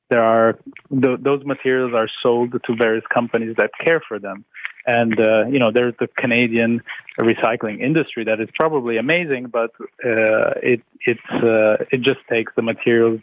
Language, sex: English, male